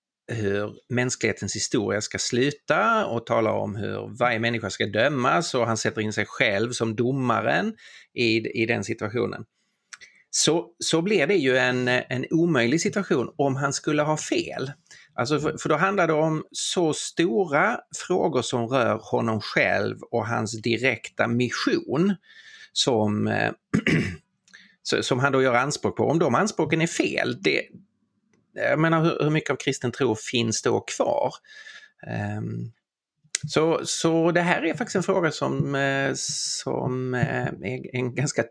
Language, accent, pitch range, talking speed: Swedish, native, 115-155 Hz, 145 wpm